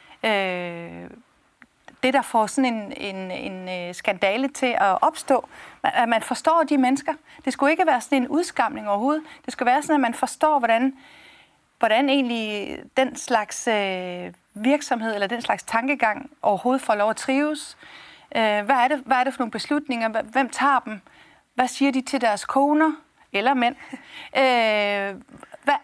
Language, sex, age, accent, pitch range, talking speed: Danish, female, 40-59, native, 215-280 Hz, 155 wpm